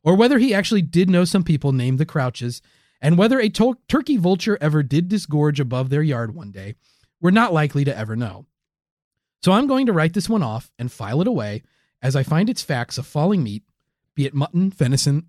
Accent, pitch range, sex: American, 145-220 Hz, male